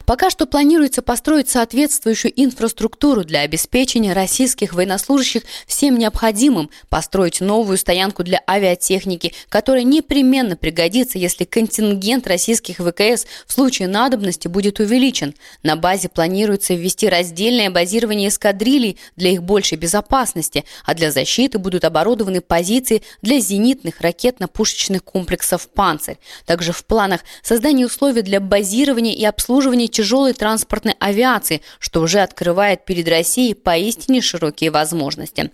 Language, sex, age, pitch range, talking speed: Russian, female, 20-39, 170-235 Hz, 120 wpm